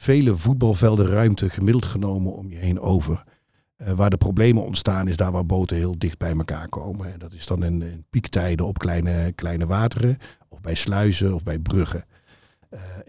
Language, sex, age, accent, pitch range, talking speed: Dutch, male, 50-69, Dutch, 85-100 Hz, 190 wpm